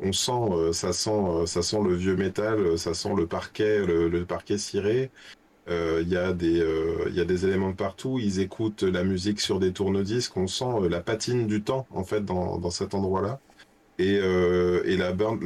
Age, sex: 30-49, male